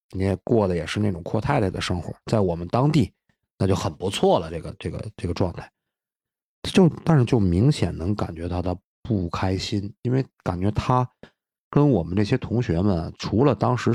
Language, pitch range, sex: Chinese, 90-115 Hz, male